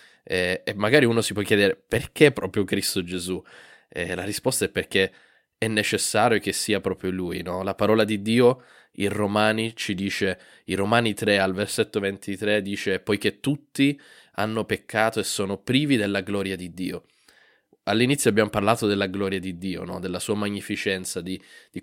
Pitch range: 100-120 Hz